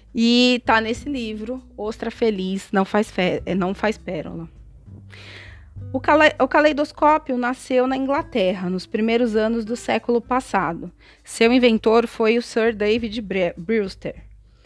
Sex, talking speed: female, 130 wpm